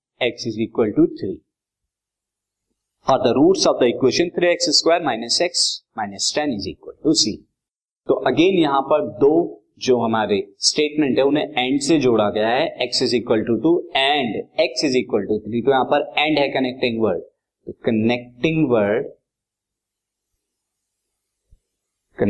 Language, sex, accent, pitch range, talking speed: Hindi, male, native, 120-190 Hz, 160 wpm